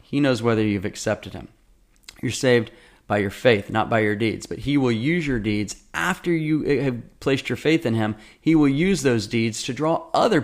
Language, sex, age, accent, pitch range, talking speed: English, male, 30-49, American, 105-130 Hz, 215 wpm